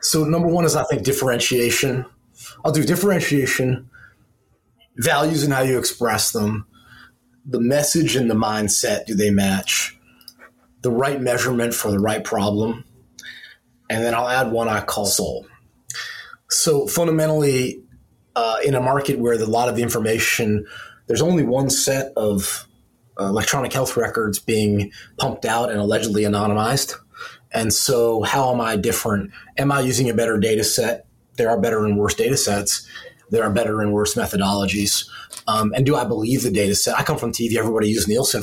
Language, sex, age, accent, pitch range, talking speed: English, male, 30-49, American, 105-135 Hz, 165 wpm